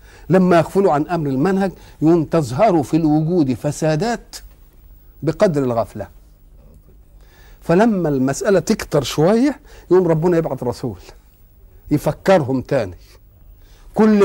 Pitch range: 125-185 Hz